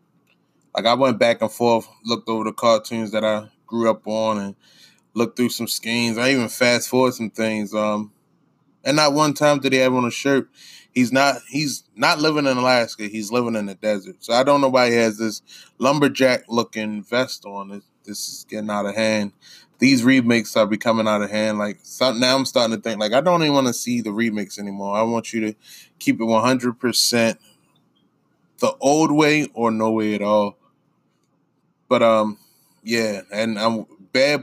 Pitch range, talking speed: 105-125 Hz, 195 wpm